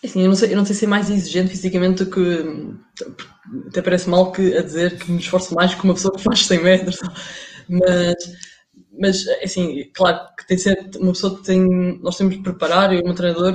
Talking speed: 220 wpm